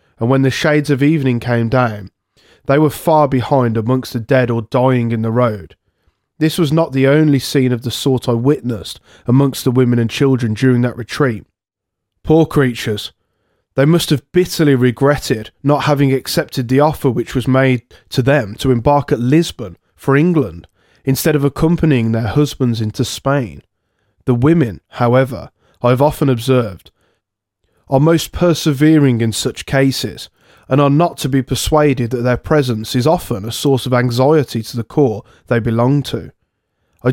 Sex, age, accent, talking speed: male, 20-39, British, 170 wpm